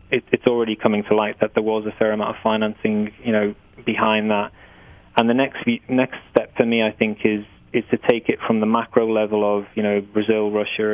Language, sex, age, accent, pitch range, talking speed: English, male, 20-39, British, 105-110 Hz, 225 wpm